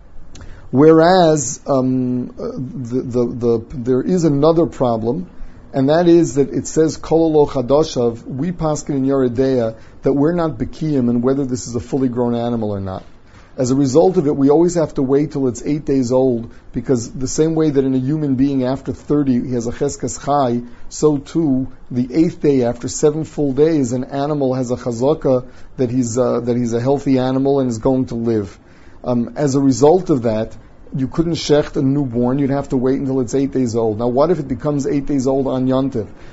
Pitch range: 120-150 Hz